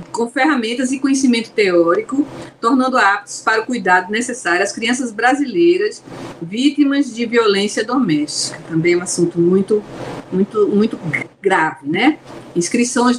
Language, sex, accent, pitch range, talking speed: Portuguese, female, Brazilian, 185-255 Hz, 125 wpm